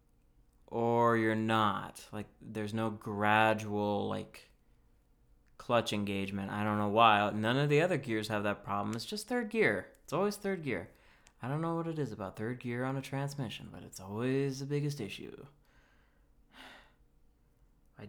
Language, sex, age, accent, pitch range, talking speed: English, male, 30-49, American, 105-135 Hz, 165 wpm